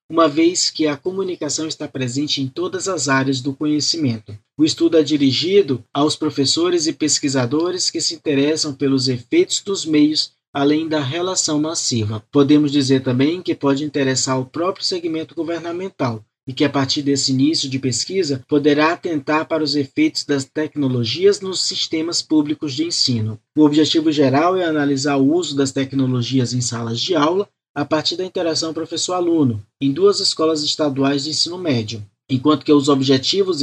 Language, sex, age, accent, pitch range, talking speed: Portuguese, male, 20-39, Brazilian, 135-165 Hz, 160 wpm